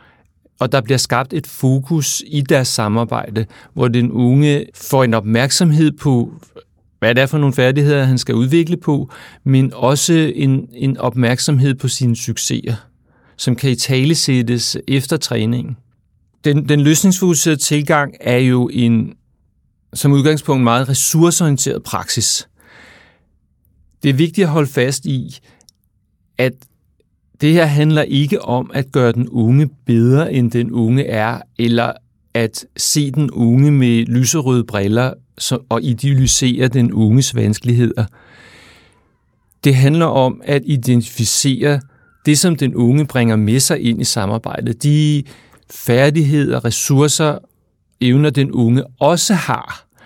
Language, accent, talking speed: Danish, native, 130 wpm